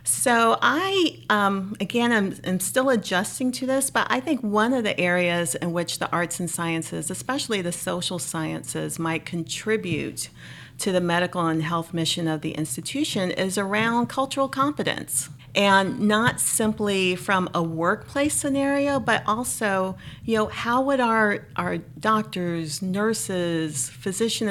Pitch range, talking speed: 160-215 Hz, 145 wpm